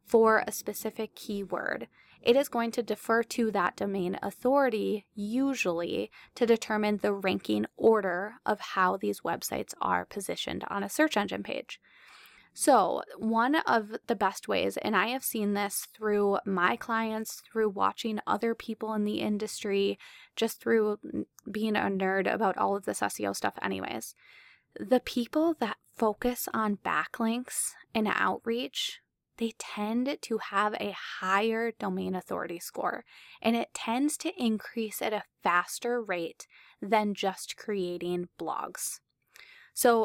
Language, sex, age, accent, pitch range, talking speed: English, female, 20-39, American, 195-235 Hz, 140 wpm